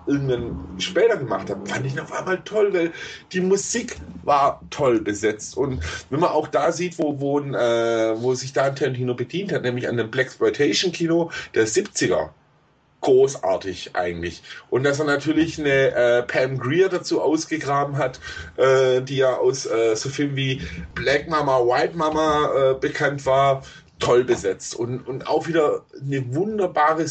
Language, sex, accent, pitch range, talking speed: German, male, German, 130-170 Hz, 160 wpm